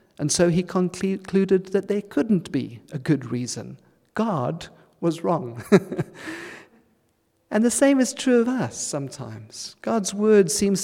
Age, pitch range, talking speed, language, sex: 50-69, 125-165 Hz, 140 wpm, English, male